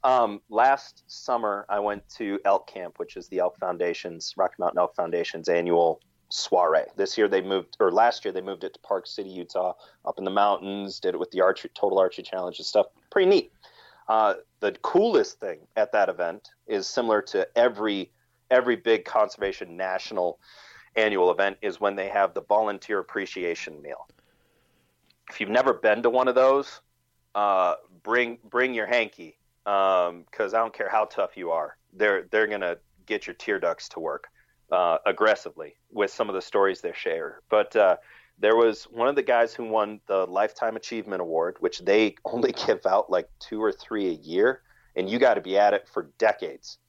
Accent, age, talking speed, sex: American, 30-49, 190 wpm, male